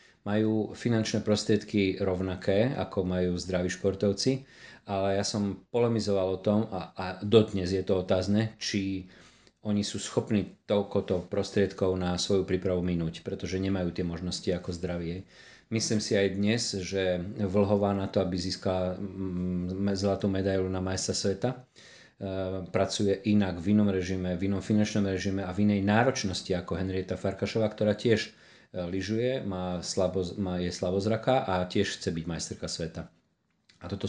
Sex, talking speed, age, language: male, 145 wpm, 40-59, Slovak